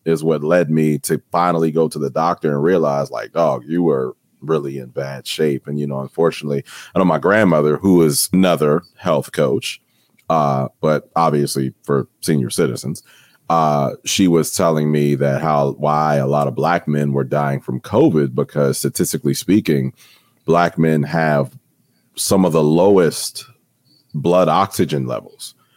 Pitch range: 70-80 Hz